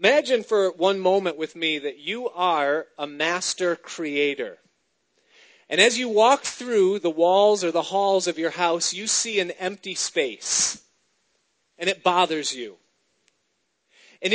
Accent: American